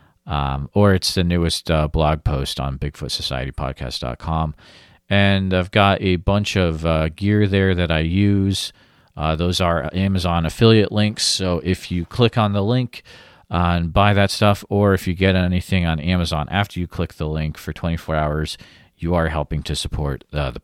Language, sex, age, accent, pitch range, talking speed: English, male, 40-59, American, 75-95 Hz, 180 wpm